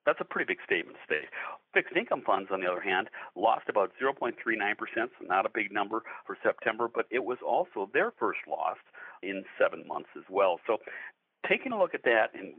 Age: 60-79